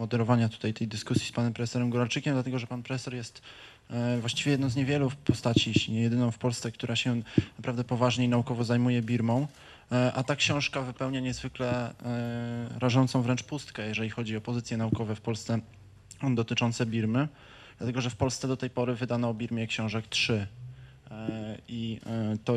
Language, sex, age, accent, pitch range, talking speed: Polish, male, 20-39, native, 115-130 Hz, 160 wpm